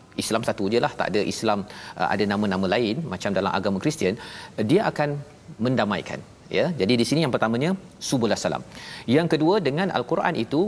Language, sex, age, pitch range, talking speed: Malayalam, male, 40-59, 105-130 Hz, 165 wpm